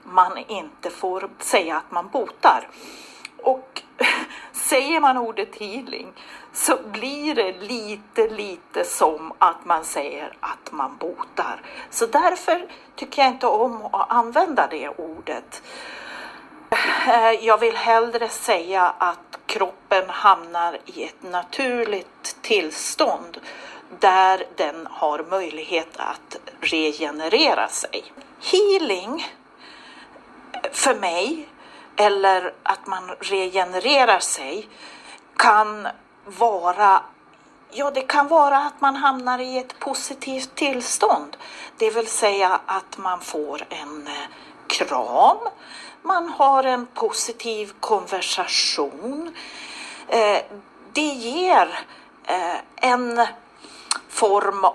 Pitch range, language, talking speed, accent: 190-280 Hz, Swedish, 100 wpm, native